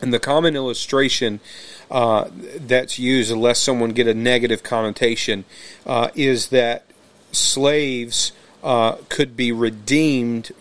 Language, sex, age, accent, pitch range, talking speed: English, male, 40-59, American, 115-130 Hz, 120 wpm